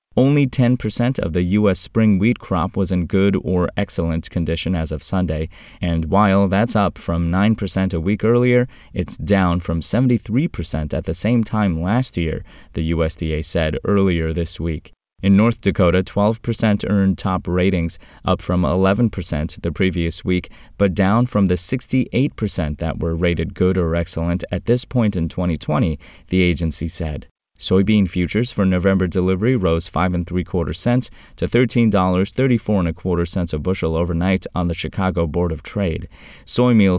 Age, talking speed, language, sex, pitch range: 20-39, 170 wpm, English, male, 85-105 Hz